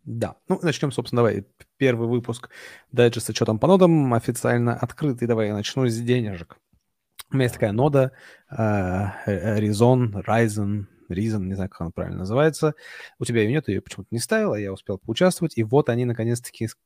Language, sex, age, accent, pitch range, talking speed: Russian, male, 30-49, native, 105-130 Hz, 180 wpm